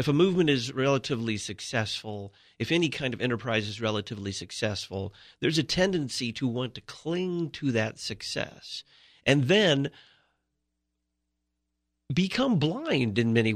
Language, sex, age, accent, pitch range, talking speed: English, male, 40-59, American, 100-140 Hz, 135 wpm